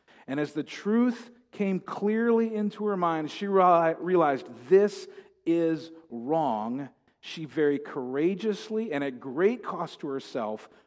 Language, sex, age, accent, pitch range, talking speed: English, male, 40-59, American, 135-190 Hz, 125 wpm